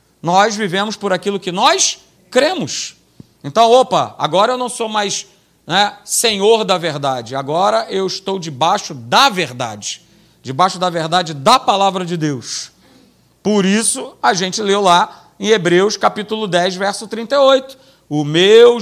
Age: 40-59